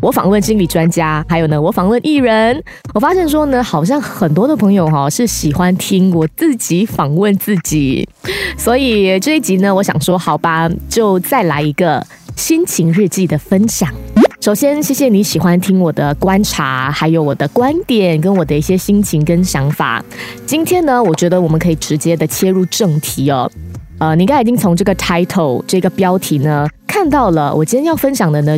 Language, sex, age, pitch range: Chinese, female, 20-39, 155-210 Hz